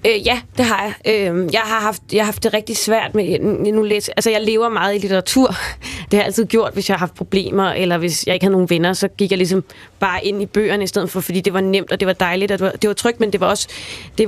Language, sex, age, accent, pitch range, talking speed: Danish, female, 20-39, native, 195-230 Hz, 295 wpm